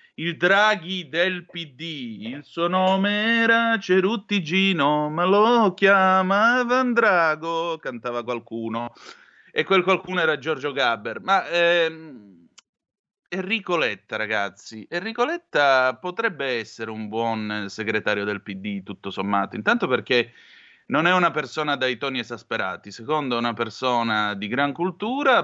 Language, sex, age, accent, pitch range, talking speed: Italian, male, 30-49, native, 115-170 Hz, 125 wpm